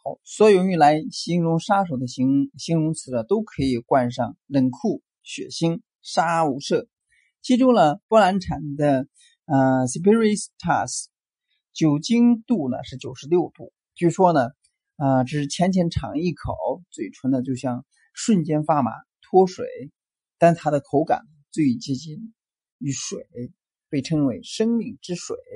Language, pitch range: Chinese, 135-215 Hz